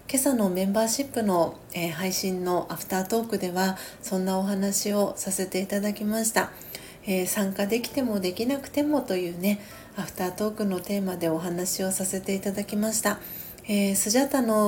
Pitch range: 185-220 Hz